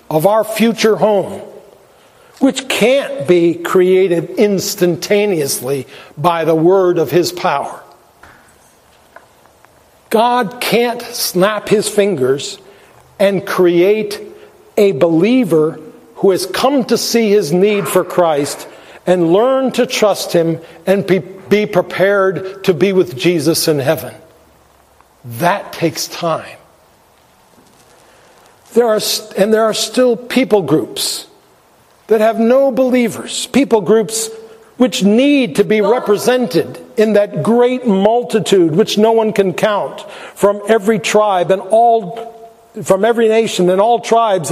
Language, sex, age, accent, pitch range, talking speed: English, male, 60-79, American, 185-225 Hz, 120 wpm